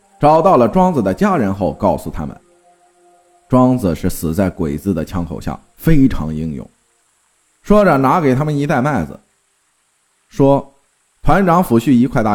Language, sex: Chinese, male